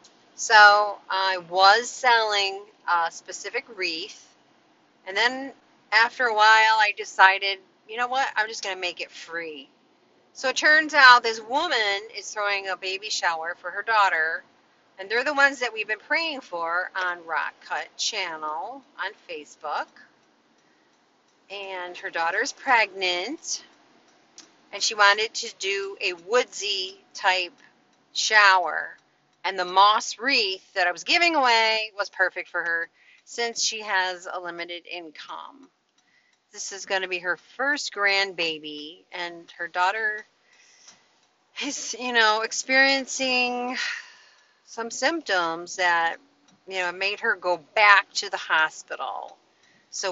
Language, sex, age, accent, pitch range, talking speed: English, female, 40-59, American, 180-255 Hz, 135 wpm